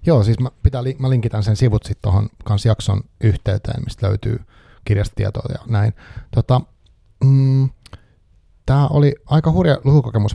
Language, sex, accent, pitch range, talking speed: Finnish, male, native, 100-115 Hz, 135 wpm